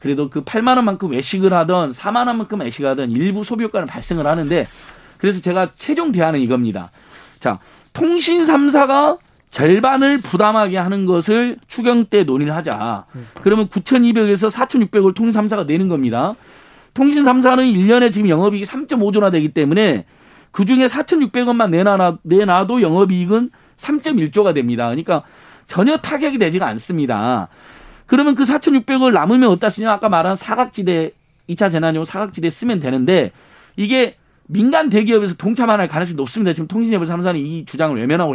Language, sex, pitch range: Korean, male, 165-240 Hz